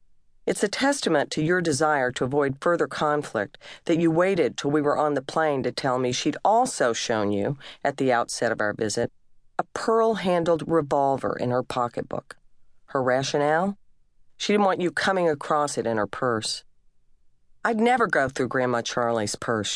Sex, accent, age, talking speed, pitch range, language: female, American, 40-59, 175 wpm, 125-165 Hz, English